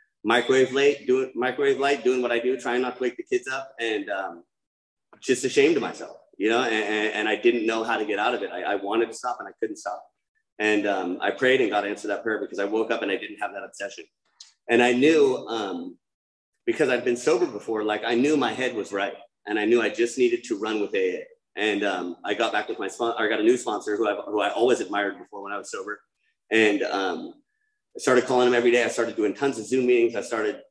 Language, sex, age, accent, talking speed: English, male, 30-49, American, 255 wpm